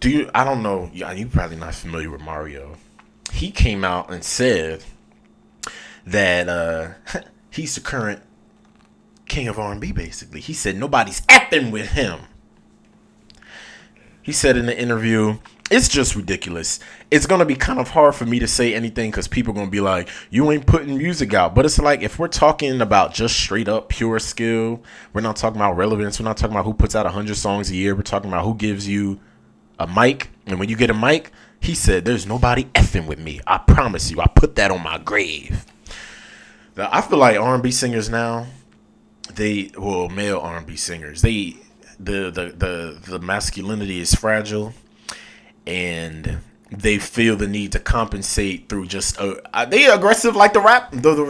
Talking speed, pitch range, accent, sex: 185 wpm, 95-120 Hz, American, male